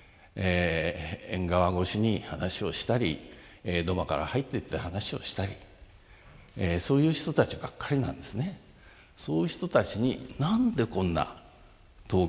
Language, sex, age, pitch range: Japanese, male, 50-69, 90-135 Hz